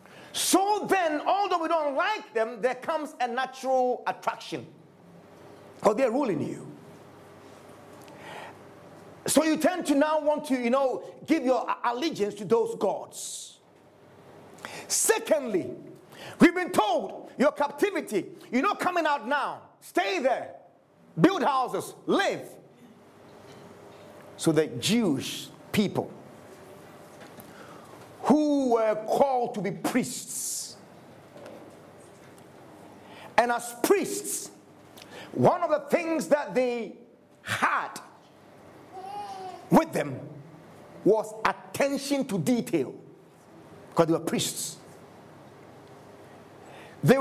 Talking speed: 100 wpm